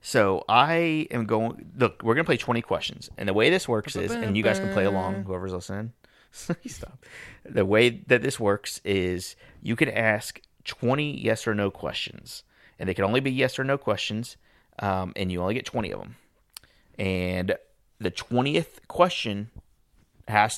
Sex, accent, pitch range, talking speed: male, American, 90-110 Hz, 180 wpm